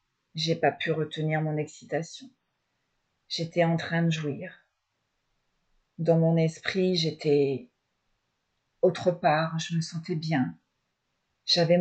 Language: French